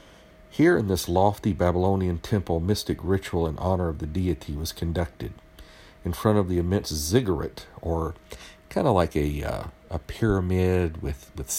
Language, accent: English, American